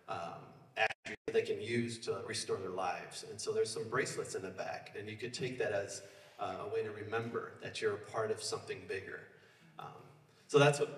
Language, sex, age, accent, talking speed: English, male, 30-49, American, 210 wpm